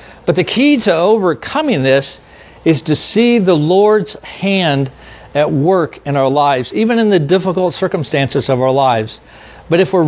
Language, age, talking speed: English, 50-69, 165 wpm